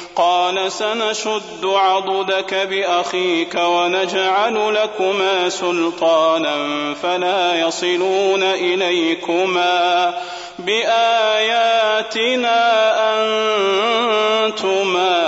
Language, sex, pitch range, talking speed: Arabic, male, 165-190 Hz, 45 wpm